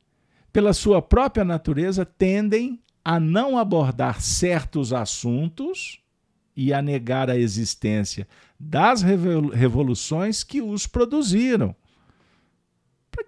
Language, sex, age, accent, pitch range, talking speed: Portuguese, male, 50-69, Brazilian, 115-190 Hz, 95 wpm